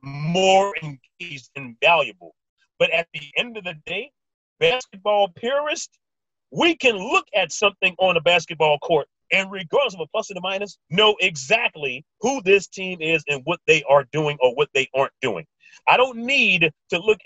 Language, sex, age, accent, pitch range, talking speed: English, male, 40-59, American, 170-275 Hz, 175 wpm